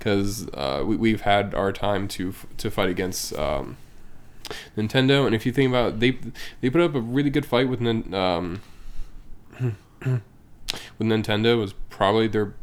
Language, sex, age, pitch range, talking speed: English, male, 10-29, 95-115 Hz, 170 wpm